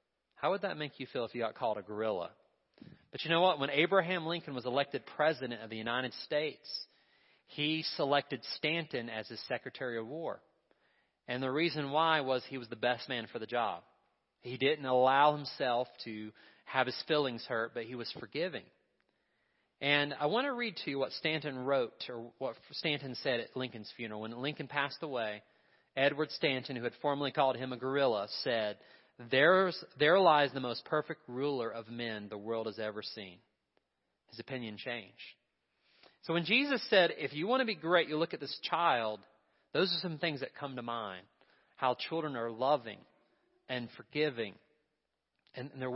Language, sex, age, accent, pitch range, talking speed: English, male, 30-49, American, 120-155 Hz, 180 wpm